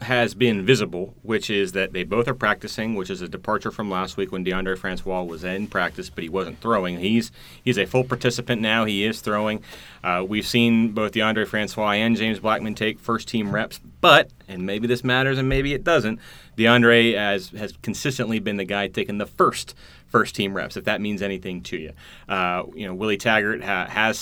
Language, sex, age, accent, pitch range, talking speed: English, male, 30-49, American, 95-120 Hz, 205 wpm